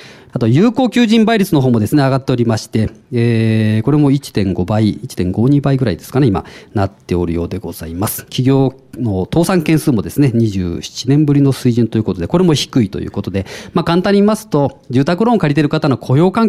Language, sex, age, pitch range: Japanese, male, 40-59, 105-150 Hz